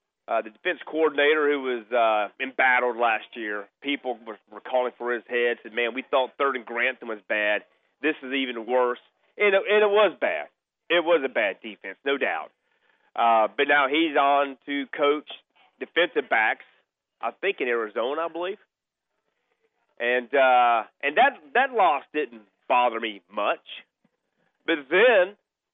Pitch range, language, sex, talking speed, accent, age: 125-165 Hz, English, male, 155 wpm, American, 40-59